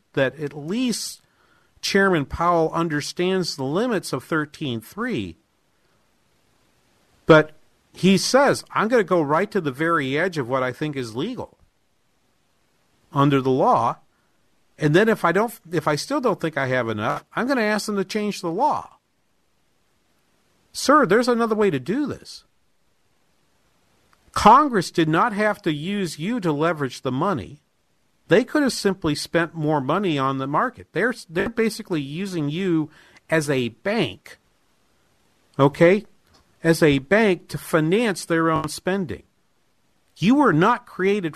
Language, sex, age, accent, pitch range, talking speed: English, male, 50-69, American, 140-195 Hz, 150 wpm